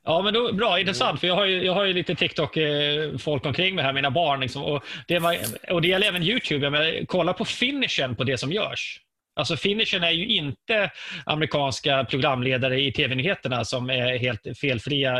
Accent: native